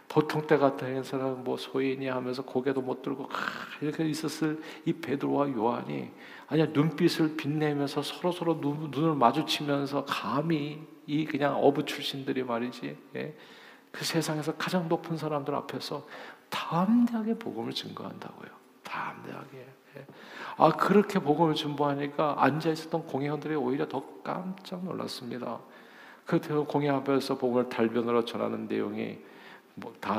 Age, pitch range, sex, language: 50-69, 125-160 Hz, male, Korean